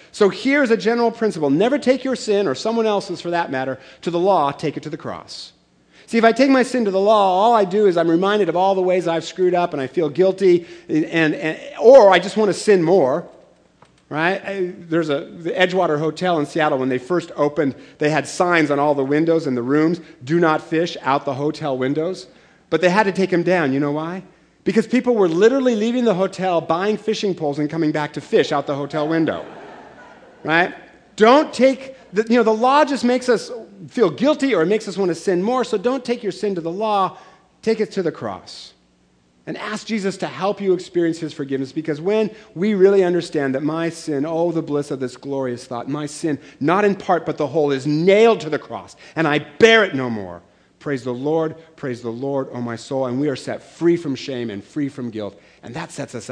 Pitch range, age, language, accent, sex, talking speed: 145-205 Hz, 40-59, English, American, male, 230 wpm